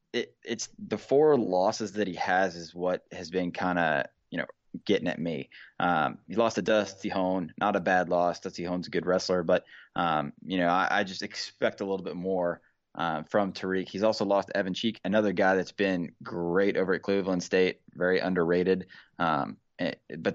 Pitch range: 90-110 Hz